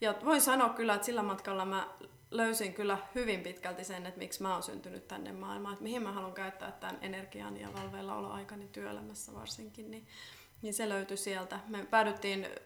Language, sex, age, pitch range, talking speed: Finnish, female, 20-39, 185-215 Hz, 180 wpm